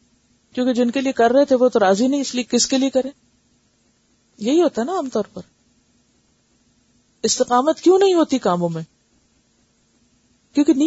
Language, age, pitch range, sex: Urdu, 40-59, 175-235 Hz, female